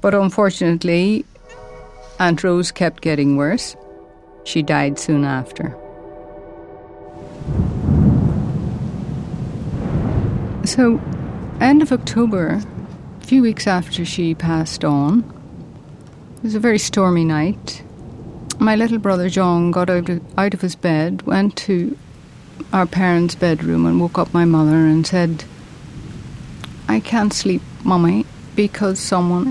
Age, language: 60-79, English